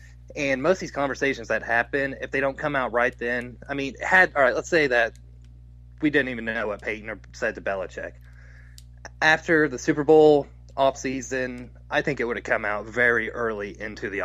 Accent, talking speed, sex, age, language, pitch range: American, 200 wpm, male, 20-39, English, 95-145 Hz